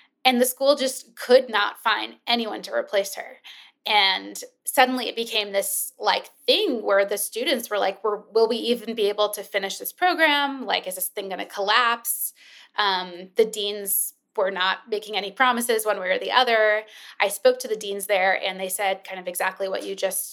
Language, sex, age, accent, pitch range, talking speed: English, female, 20-39, American, 200-255 Hz, 195 wpm